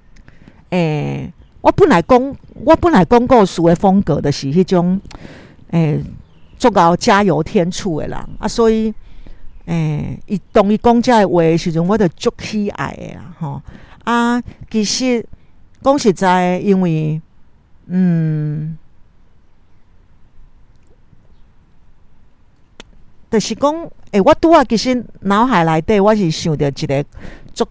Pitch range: 160-220 Hz